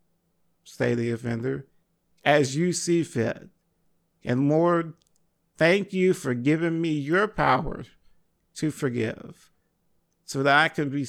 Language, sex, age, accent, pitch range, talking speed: English, male, 50-69, American, 130-165 Hz, 125 wpm